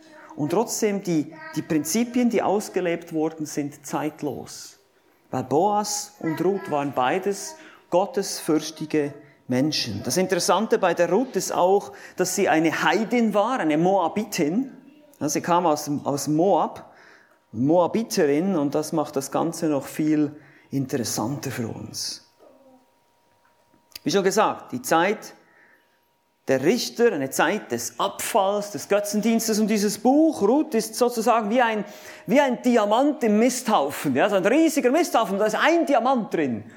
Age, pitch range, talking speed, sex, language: 40-59, 150-230 Hz, 140 wpm, male, German